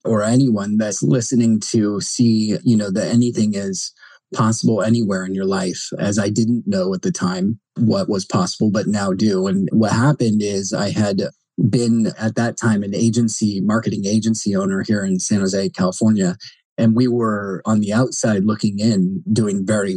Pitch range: 100-120 Hz